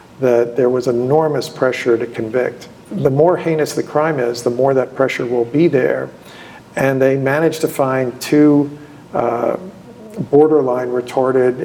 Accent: American